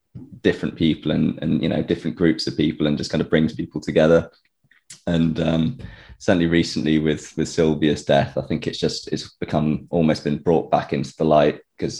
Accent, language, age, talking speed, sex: British, English, 20-39, 195 wpm, male